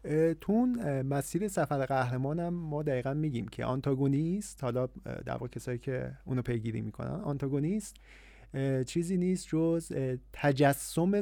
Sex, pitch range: male, 125-165 Hz